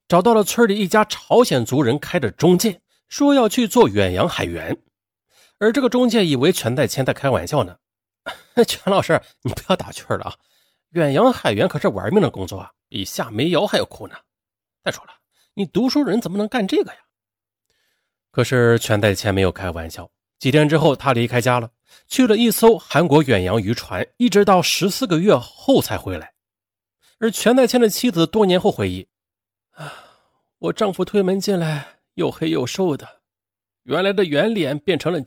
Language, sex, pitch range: Chinese, male, 140-225 Hz